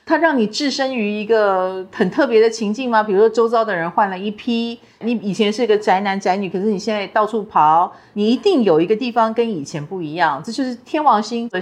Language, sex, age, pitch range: Chinese, female, 40-59, 180-235 Hz